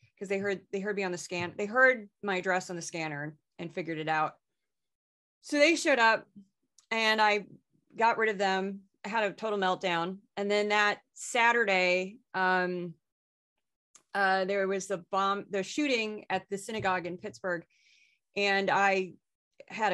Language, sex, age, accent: English, female, 30-49, American